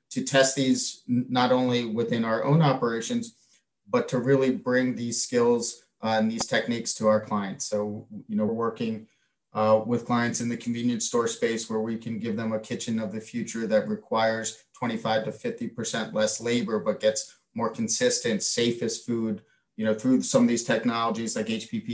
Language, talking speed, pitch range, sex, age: English, 180 wpm, 110-140 Hz, male, 30-49